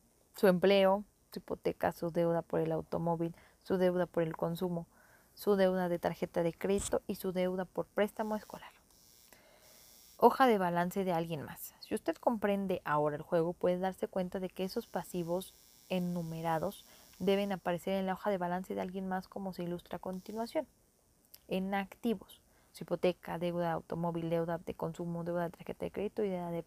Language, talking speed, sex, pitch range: Spanish, 180 wpm, female, 170-205 Hz